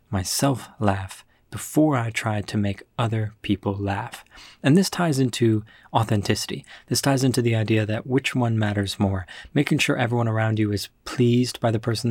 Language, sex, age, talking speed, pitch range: English, male, 20-39, 175 wpm, 105-130 Hz